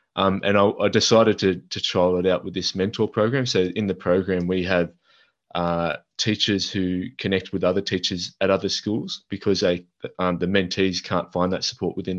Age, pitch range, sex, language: 20-39, 90-105 Hz, male, English